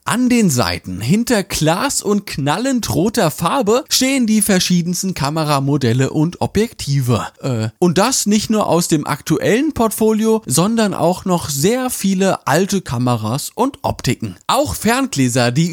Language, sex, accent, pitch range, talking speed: German, male, German, 145-220 Hz, 135 wpm